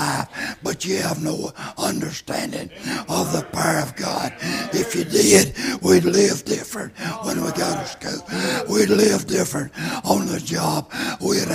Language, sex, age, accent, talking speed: English, male, 60-79, American, 145 wpm